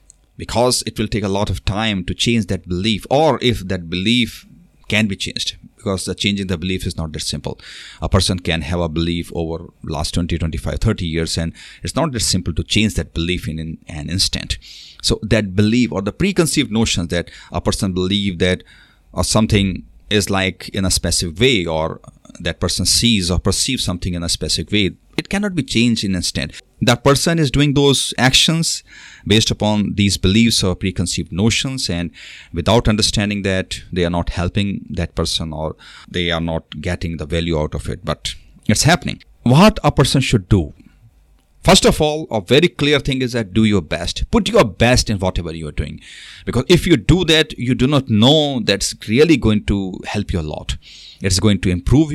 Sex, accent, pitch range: male, native, 85-115 Hz